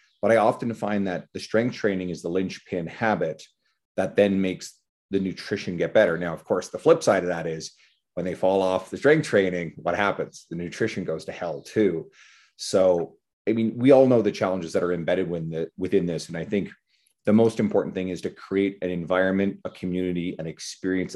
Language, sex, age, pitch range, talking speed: English, male, 30-49, 85-100 Hz, 205 wpm